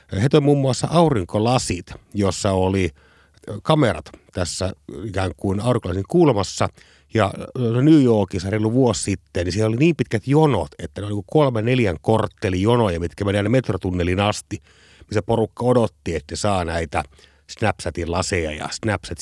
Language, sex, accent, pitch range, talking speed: Finnish, male, native, 85-125 Hz, 145 wpm